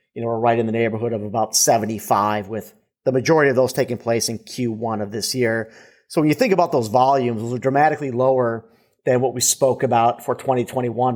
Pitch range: 115-135 Hz